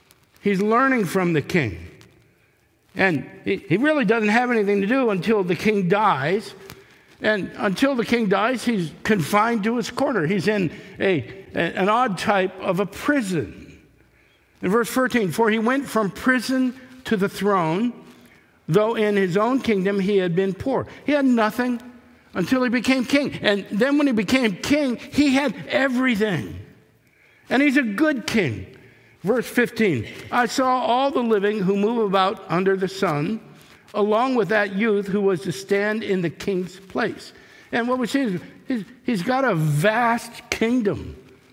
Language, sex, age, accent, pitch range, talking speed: English, male, 60-79, American, 195-255 Hz, 160 wpm